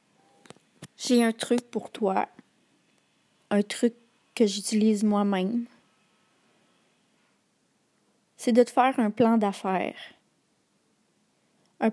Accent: Canadian